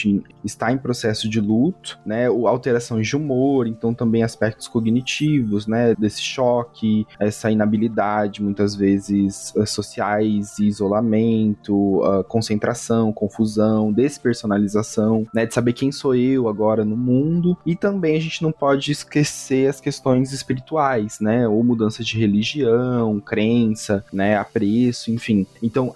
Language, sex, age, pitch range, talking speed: Portuguese, male, 20-39, 105-135 Hz, 125 wpm